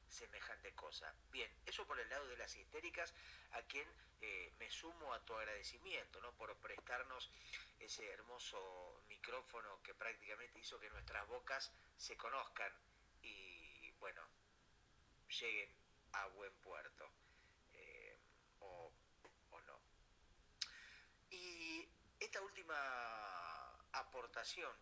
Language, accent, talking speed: Spanish, Argentinian, 110 wpm